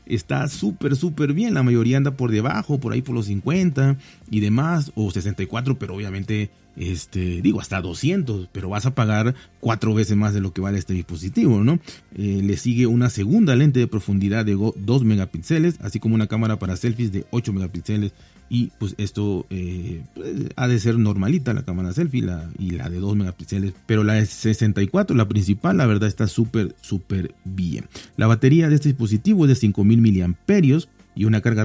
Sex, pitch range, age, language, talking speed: male, 95-120 Hz, 40-59, Spanish, 190 wpm